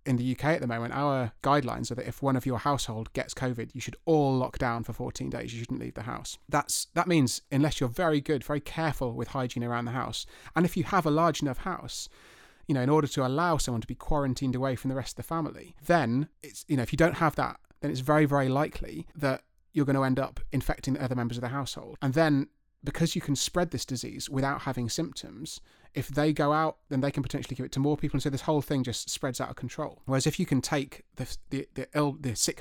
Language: English